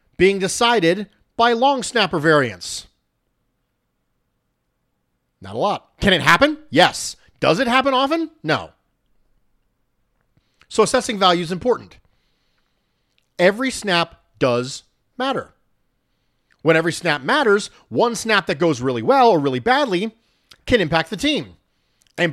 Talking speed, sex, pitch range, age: 120 wpm, male, 165-235 Hz, 40-59